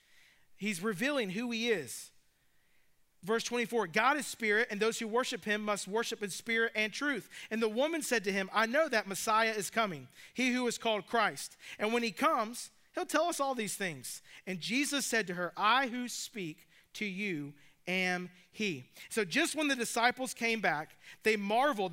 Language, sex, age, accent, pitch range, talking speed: English, male, 40-59, American, 180-235 Hz, 190 wpm